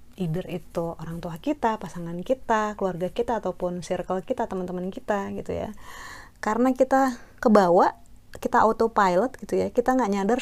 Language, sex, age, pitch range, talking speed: Indonesian, female, 20-39, 180-230 Hz, 150 wpm